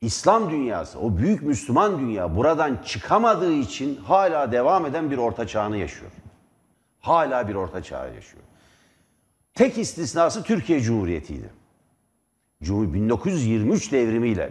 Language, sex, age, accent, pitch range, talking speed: Turkish, male, 60-79, native, 95-135 Hz, 110 wpm